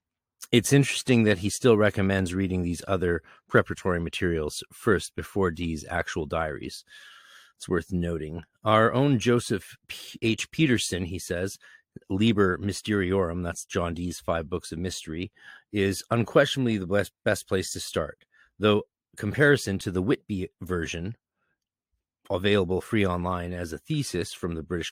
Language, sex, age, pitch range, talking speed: English, male, 30-49, 85-105 Hz, 140 wpm